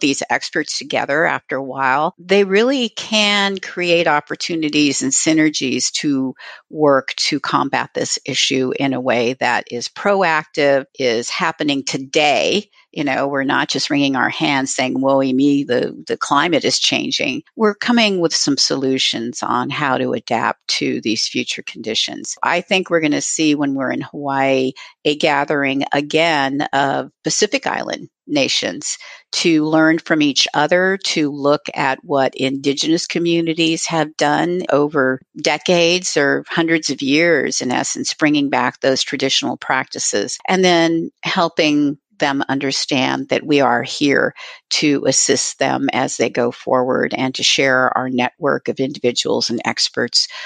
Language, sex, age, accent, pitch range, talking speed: English, female, 50-69, American, 135-175 Hz, 150 wpm